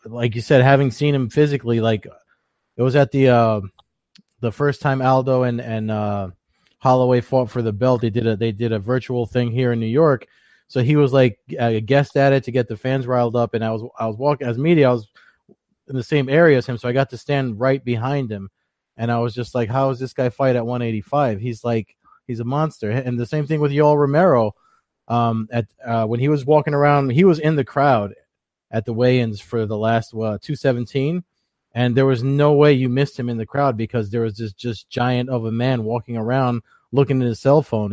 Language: English